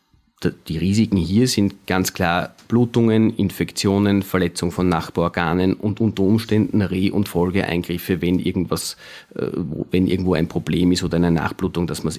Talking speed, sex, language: 150 wpm, male, German